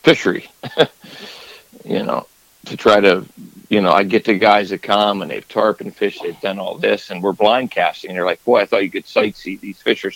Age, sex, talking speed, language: 50-69, male, 230 wpm, English